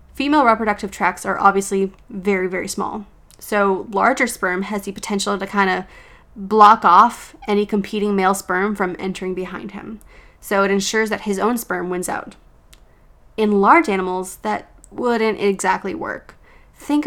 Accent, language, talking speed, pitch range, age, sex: American, English, 155 wpm, 190-220 Hz, 20-39, female